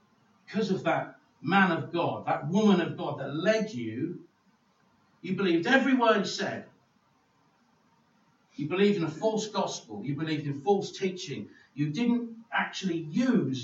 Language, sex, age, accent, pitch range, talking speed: English, male, 60-79, British, 140-210 Hz, 145 wpm